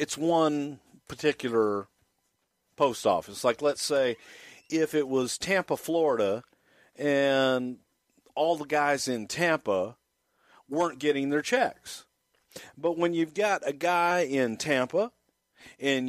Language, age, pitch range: English, 50-69, 120-165 Hz